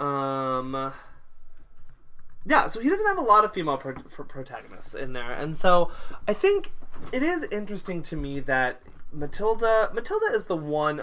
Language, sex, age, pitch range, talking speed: English, male, 20-39, 125-165 Hz, 165 wpm